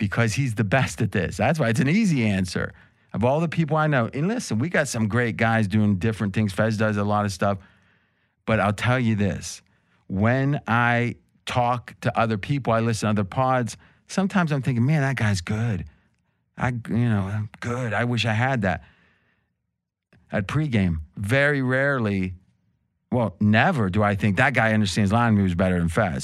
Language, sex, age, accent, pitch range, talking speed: English, male, 40-59, American, 105-135 Hz, 190 wpm